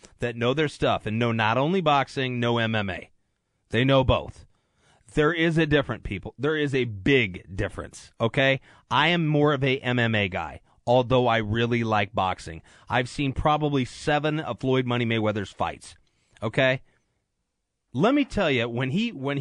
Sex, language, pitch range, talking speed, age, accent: male, English, 115-165 Hz, 165 wpm, 30-49, American